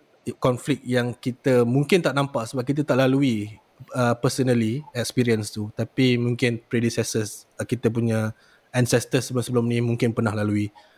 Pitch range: 115-140 Hz